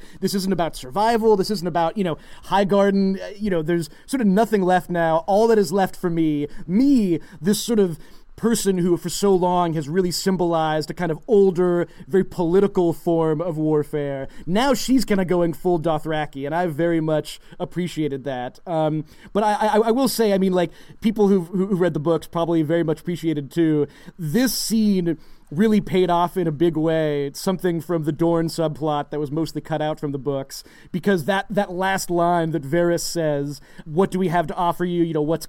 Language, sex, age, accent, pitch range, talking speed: English, male, 30-49, American, 160-195 Hz, 205 wpm